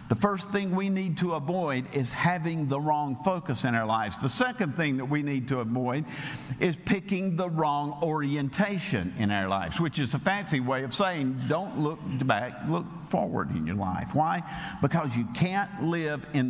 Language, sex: English, male